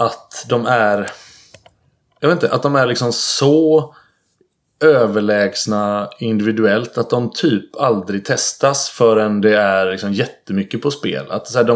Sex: male